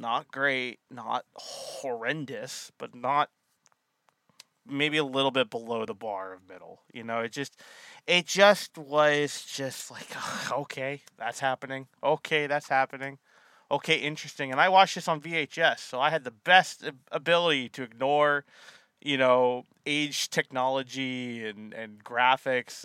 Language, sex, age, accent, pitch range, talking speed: English, male, 20-39, American, 125-175 Hz, 140 wpm